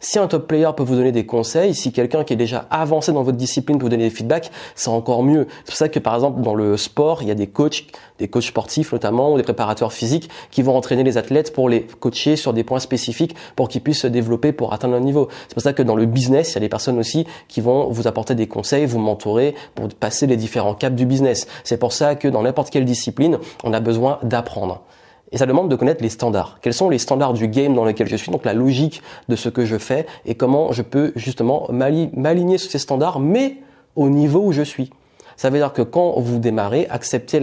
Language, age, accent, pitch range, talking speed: French, 20-39, French, 115-145 Hz, 255 wpm